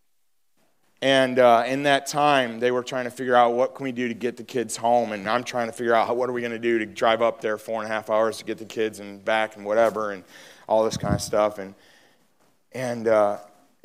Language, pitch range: English, 115-195 Hz